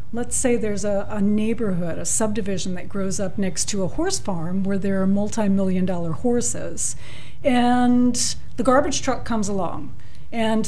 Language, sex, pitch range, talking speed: English, female, 190-230 Hz, 165 wpm